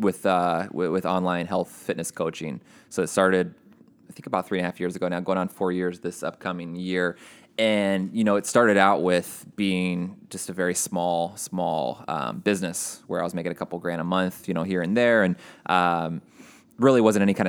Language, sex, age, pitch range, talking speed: English, male, 20-39, 90-95 Hz, 215 wpm